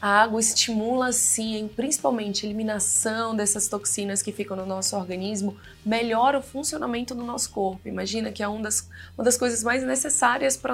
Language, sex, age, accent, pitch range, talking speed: Portuguese, female, 20-39, Brazilian, 200-255 Hz, 170 wpm